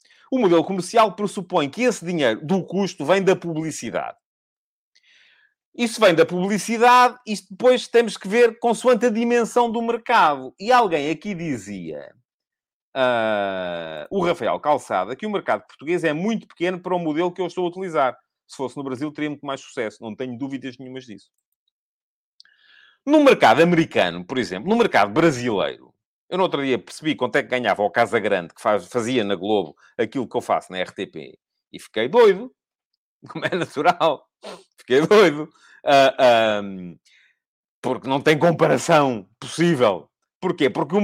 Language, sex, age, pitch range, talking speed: English, male, 40-59, 145-235 Hz, 160 wpm